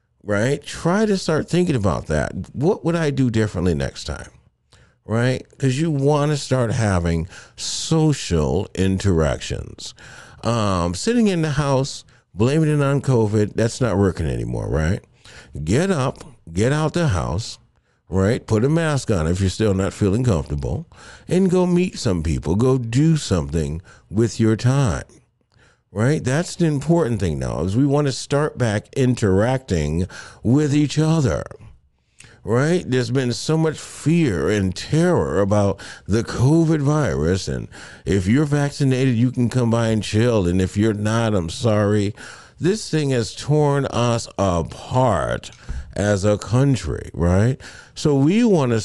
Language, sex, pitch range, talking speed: English, male, 95-145 Hz, 150 wpm